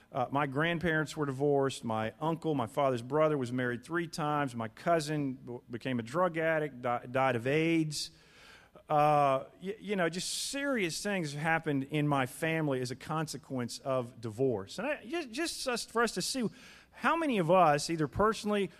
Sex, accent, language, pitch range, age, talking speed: male, American, English, 130-210 Hz, 40-59, 165 wpm